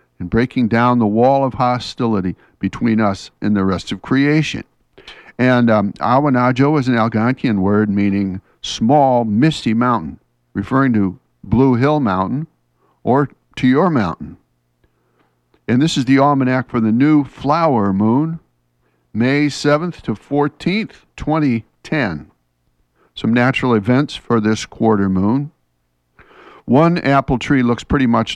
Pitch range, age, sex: 100-140 Hz, 60-79, male